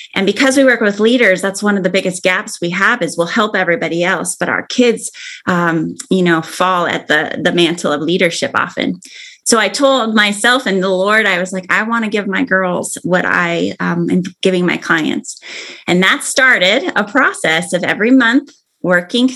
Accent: American